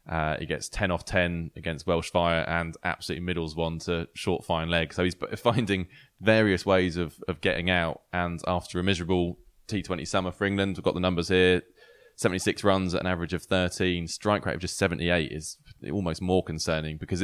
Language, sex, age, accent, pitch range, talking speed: English, male, 20-39, British, 85-100 Hz, 195 wpm